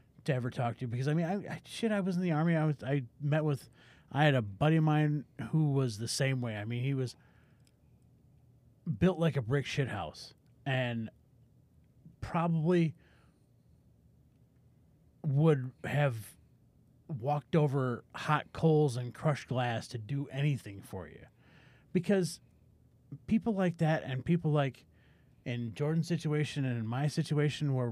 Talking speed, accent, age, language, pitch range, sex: 155 wpm, American, 30-49, English, 125-155 Hz, male